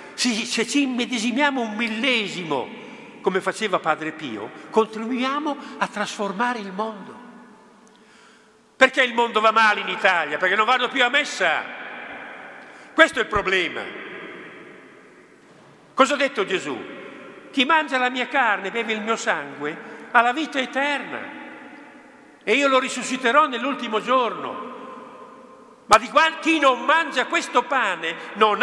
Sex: male